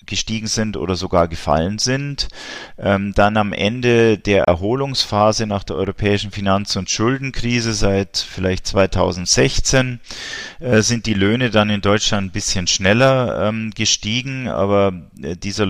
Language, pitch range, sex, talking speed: German, 90-110 Hz, male, 140 wpm